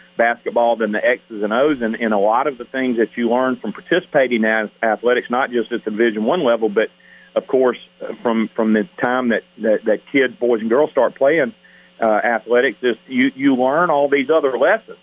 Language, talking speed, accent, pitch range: English, 215 wpm, American, 115-135 Hz